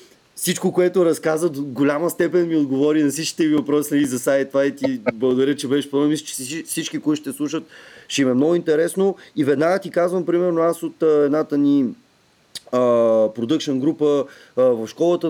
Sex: male